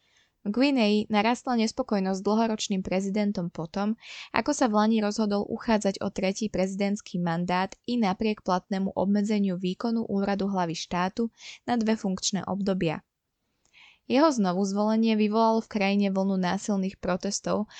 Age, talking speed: 20-39, 125 wpm